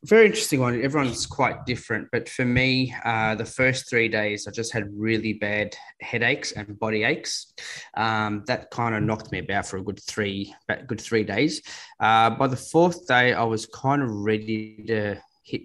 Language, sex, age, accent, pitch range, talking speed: English, male, 20-39, Australian, 105-120 Hz, 190 wpm